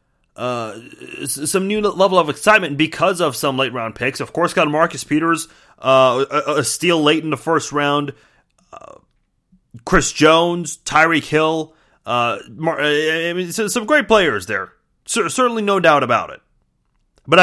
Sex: male